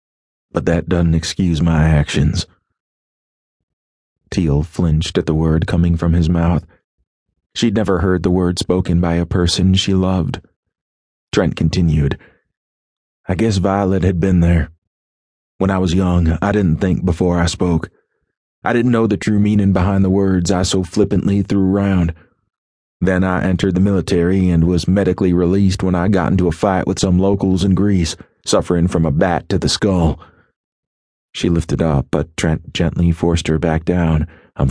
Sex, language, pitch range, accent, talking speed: male, English, 80-95 Hz, American, 165 wpm